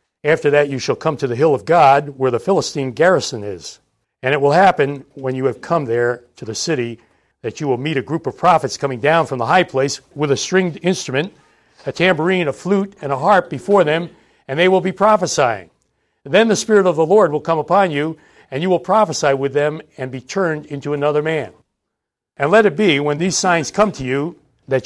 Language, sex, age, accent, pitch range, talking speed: English, male, 60-79, American, 135-175 Hz, 220 wpm